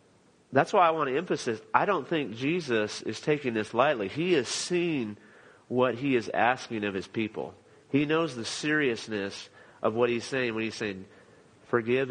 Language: English